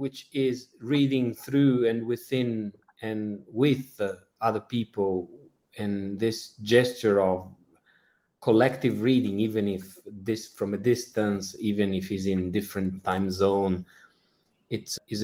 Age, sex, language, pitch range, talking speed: 30-49, male, English, 95-120 Hz, 125 wpm